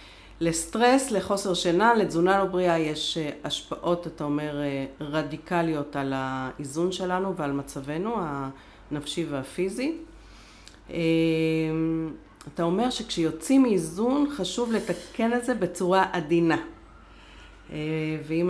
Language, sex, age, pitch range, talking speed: Hebrew, female, 40-59, 150-200 Hz, 95 wpm